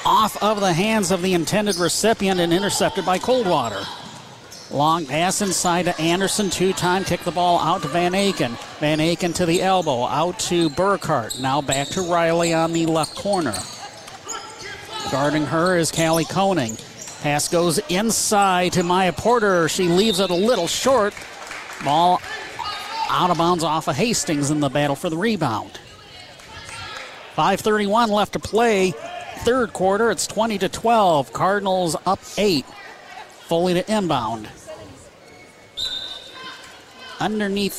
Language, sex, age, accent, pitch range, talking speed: English, male, 50-69, American, 160-195 Hz, 140 wpm